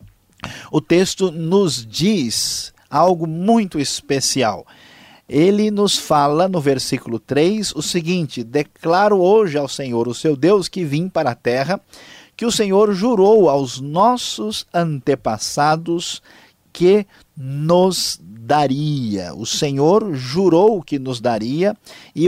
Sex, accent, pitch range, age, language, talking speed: male, Brazilian, 130-180 Hz, 50-69, Portuguese, 120 wpm